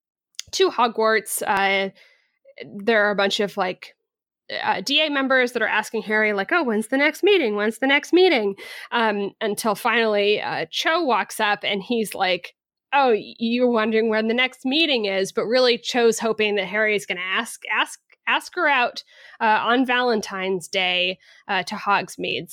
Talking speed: 175 wpm